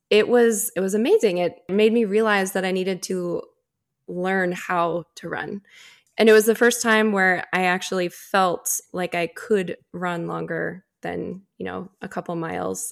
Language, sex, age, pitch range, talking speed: English, female, 20-39, 180-220 Hz, 175 wpm